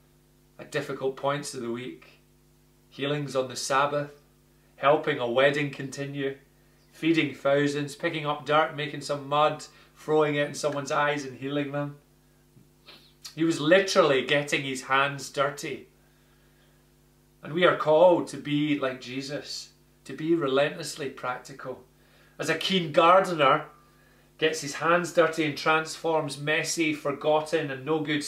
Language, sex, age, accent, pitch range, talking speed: English, male, 30-49, British, 140-160 Hz, 135 wpm